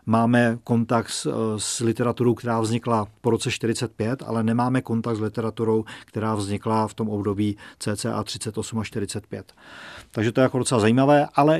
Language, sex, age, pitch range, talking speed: Czech, male, 40-59, 115-130 Hz, 160 wpm